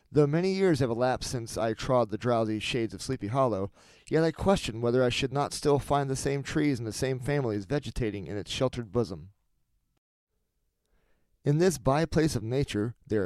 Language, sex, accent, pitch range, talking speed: English, male, American, 110-140 Hz, 190 wpm